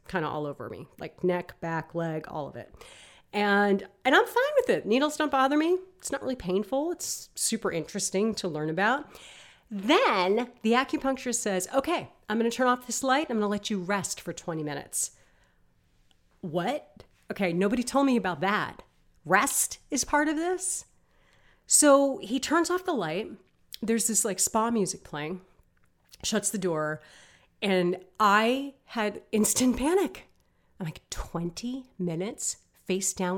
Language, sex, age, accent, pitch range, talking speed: English, female, 40-59, American, 180-250 Hz, 165 wpm